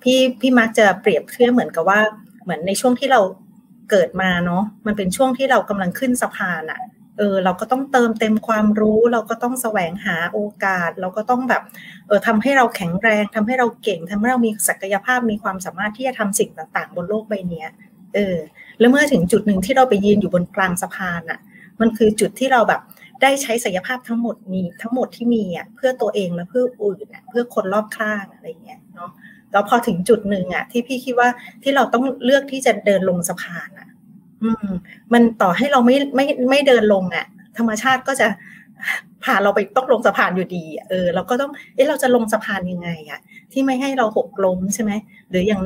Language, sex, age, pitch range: Thai, female, 30-49, 195-245 Hz